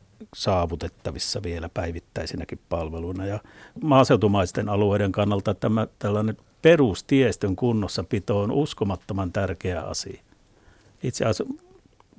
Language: Finnish